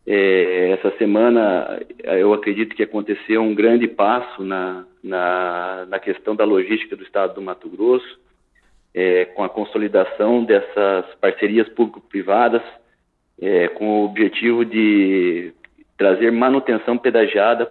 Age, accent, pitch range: 40-59, Brazilian, 105-125 Hz